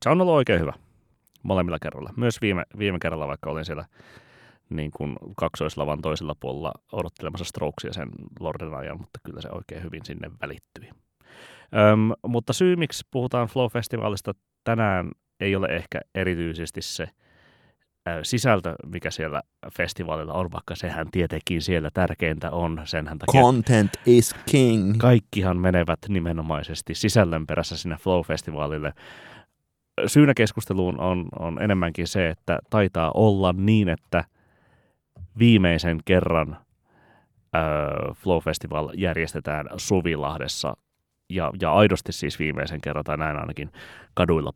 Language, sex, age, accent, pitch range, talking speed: Finnish, male, 30-49, native, 80-105 Hz, 120 wpm